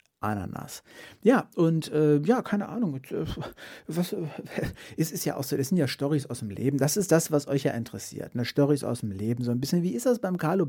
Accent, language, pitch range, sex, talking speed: German, German, 135-175 Hz, male, 220 wpm